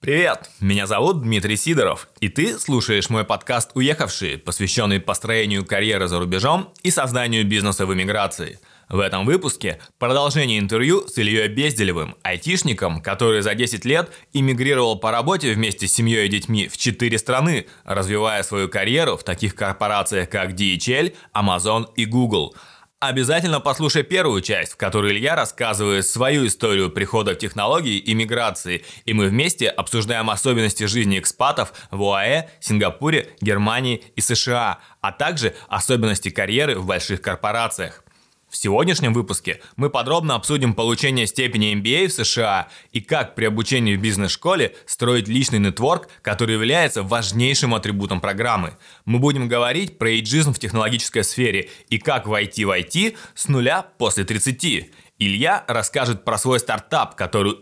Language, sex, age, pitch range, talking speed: Russian, male, 20-39, 100-130 Hz, 145 wpm